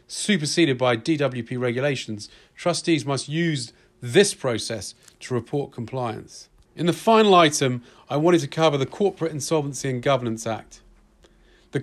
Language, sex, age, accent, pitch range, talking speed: English, male, 40-59, British, 120-160 Hz, 135 wpm